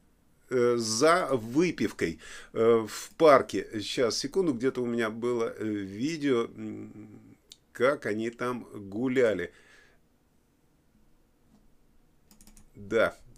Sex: male